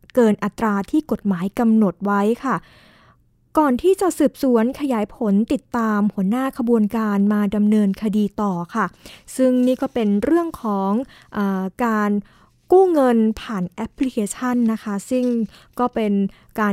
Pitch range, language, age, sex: 210-260 Hz, Thai, 20-39, female